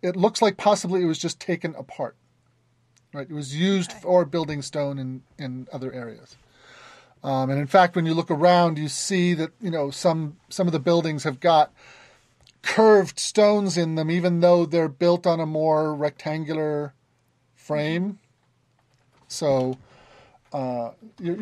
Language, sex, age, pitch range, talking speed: English, male, 30-49, 130-185 Hz, 155 wpm